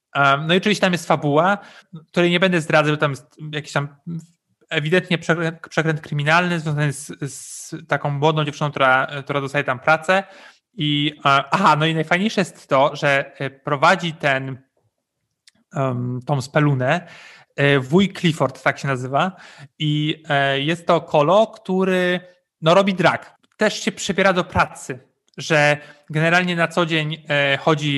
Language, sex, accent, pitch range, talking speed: Polish, male, native, 140-170 Hz, 135 wpm